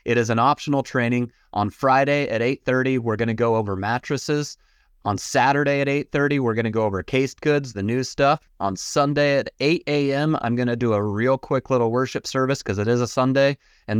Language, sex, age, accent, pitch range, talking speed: English, male, 30-49, American, 110-135 Hz, 215 wpm